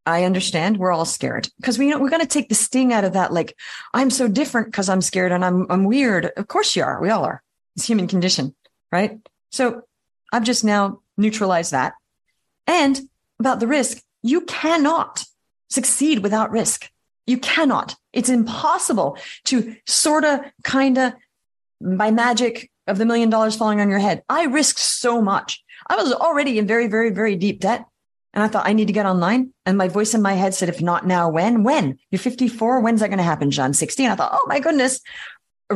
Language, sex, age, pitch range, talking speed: English, female, 40-59, 180-250 Hz, 205 wpm